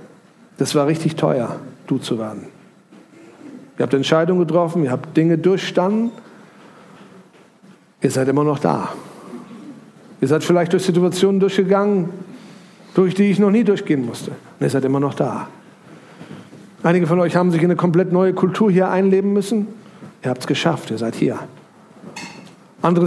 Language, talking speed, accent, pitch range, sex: German, 155 wpm, German, 150-190 Hz, male